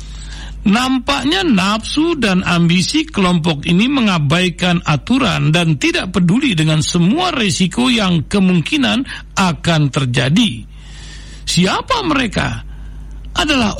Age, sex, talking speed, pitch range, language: 60-79, male, 90 wpm, 160-225 Hz, Indonesian